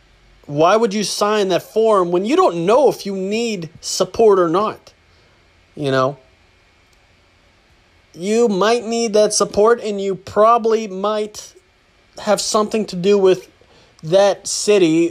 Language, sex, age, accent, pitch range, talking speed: English, male, 30-49, American, 125-195 Hz, 135 wpm